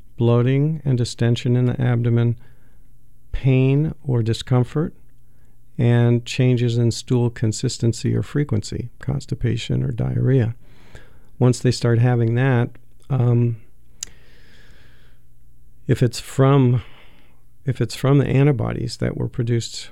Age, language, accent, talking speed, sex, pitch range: 50-69, English, American, 110 wpm, male, 115-125 Hz